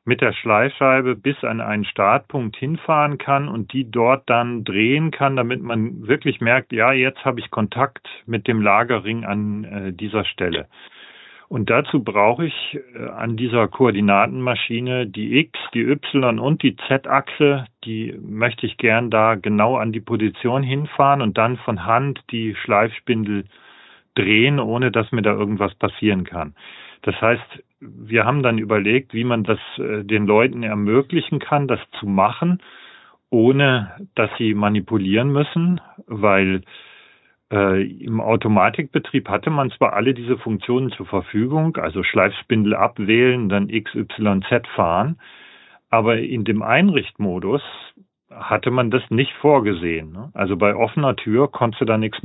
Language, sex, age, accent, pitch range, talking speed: German, male, 40-59, German, 105-130 Hz, 145 wpm